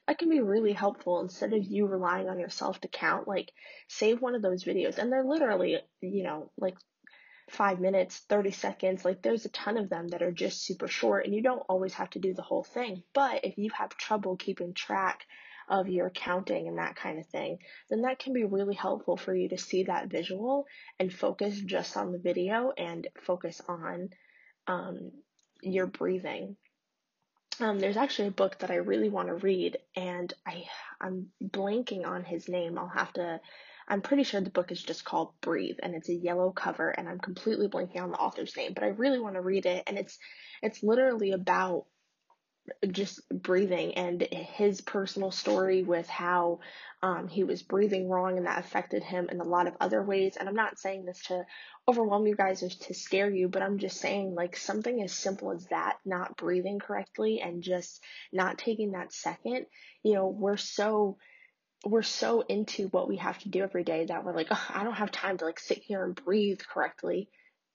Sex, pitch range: female, 180-215 Hz